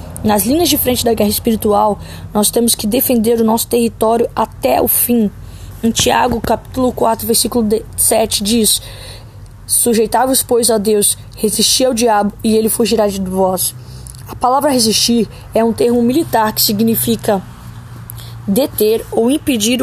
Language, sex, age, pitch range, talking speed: Portuguese, female, 10-29, 215-245 Hz, 145 wpm